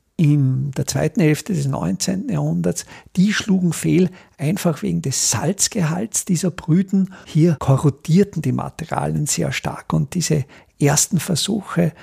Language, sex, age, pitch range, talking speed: German, male, 50-69, 145-185 Hz, 130 wpm